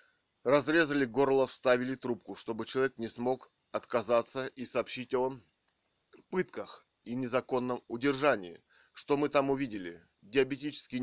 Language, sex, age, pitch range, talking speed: Russian, male, 20-39, 115-135 Hz, 115 wpm